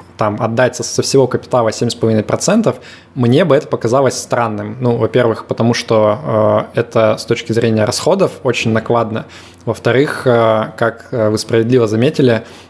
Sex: male